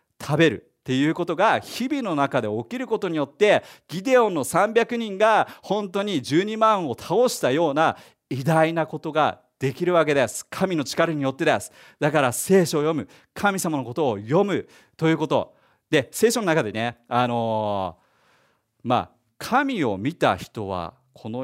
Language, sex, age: Japanese, male, 40-59